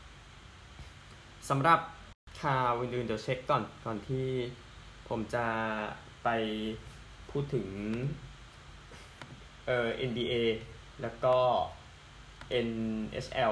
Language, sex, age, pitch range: Thai, male, 20-39, 110-135 Hz